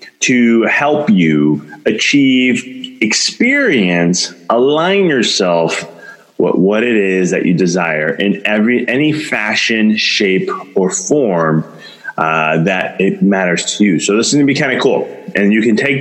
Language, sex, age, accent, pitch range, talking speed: English, male, 30-49, American, 105-150 Hz, 150 wpm